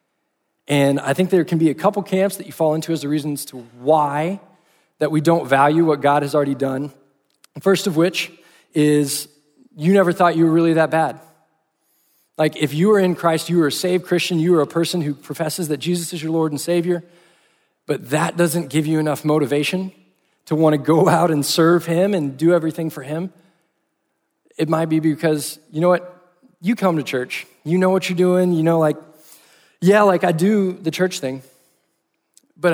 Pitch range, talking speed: 145-175 Hz, 200 wpm